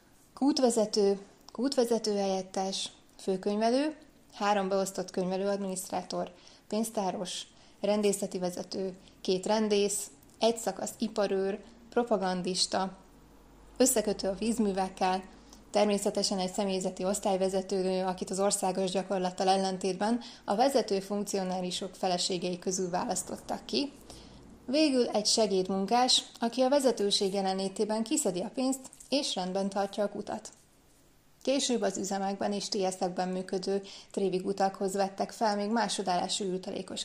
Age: 20-39